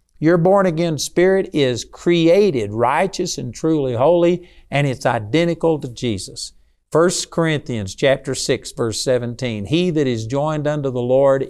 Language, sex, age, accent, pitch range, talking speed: English, male, 50-69, American, 120-160 Hz, 145 wpm